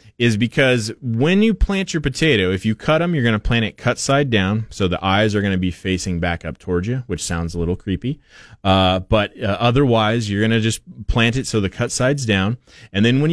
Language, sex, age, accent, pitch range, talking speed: English, male, 30-49, American, 90-120 Hz, 245 wpm